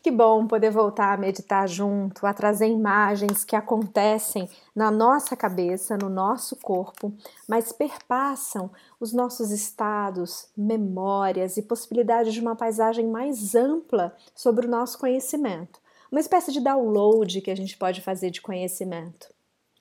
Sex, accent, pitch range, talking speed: female, Brazilian, 200-245 Hz, 140 wpm